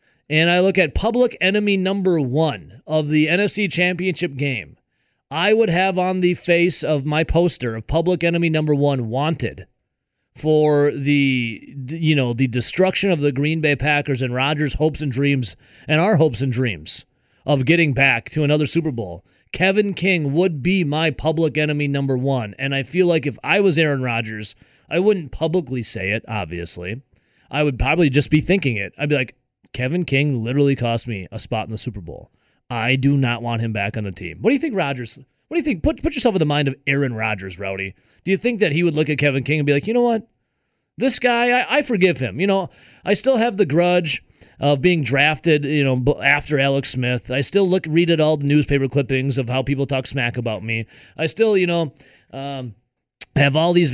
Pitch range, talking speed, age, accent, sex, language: 130-175 Hz, 210 wpm, 30-49, American, male, English